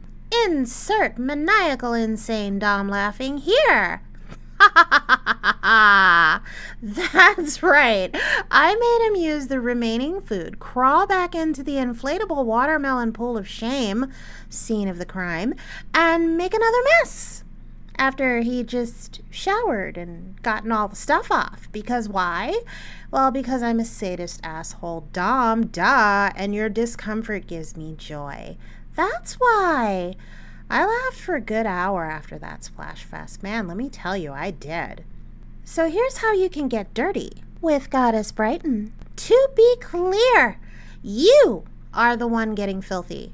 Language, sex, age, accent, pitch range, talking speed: English, female, 30-49, American, 200-325 Hz, 140 wpm